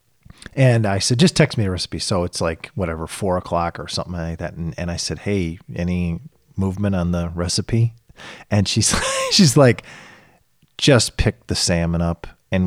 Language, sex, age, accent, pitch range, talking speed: English, male, 40-59, American, 85-125 Hz, 180 wpm